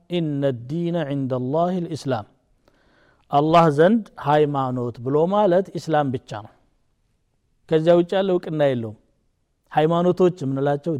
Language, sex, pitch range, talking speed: Amharic, male, 140-180 Hz, 115 wpm